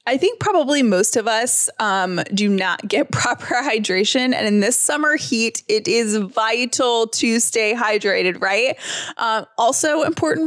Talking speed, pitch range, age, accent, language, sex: 155 wpm, 220-295 Hz, 20-39, American, English, female